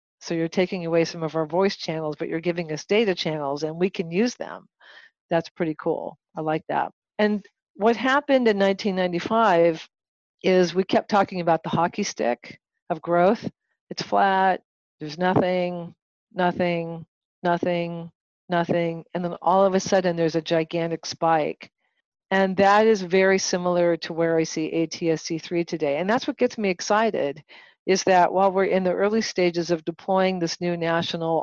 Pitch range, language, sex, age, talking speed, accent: 165-195 Hz, English, female, 50-69, 170 wpm, American